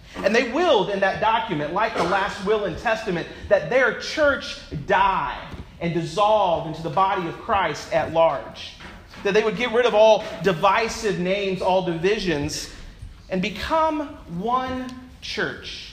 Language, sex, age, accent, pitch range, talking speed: English, male, 40-59, American, 180-255 Hz, 150 wpm